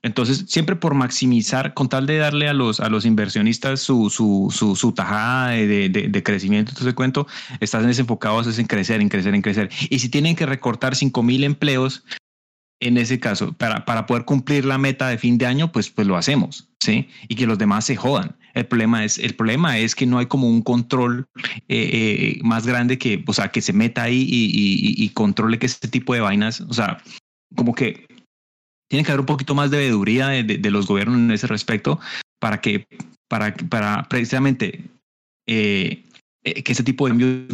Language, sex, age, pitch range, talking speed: Spanish, male, 30-49, 115-135 Hz, 210 wpm